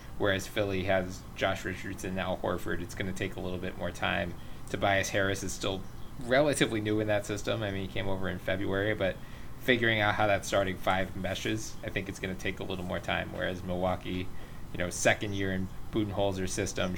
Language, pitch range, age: English, 95-120 Hz, 20-39